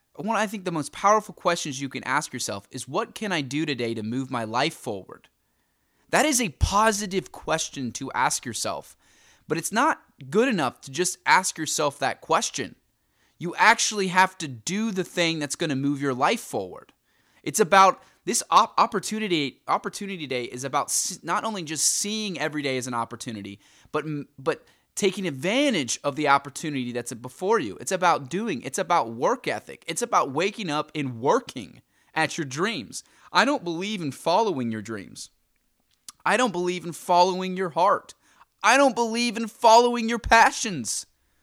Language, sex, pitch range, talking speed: English, male, 135-215 Hz, 170 wpm